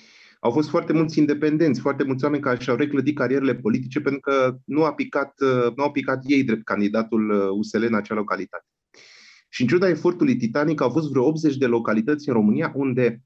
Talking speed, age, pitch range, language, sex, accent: 190 wpm, 30-49, 115-150 Hz, Romanian, male, native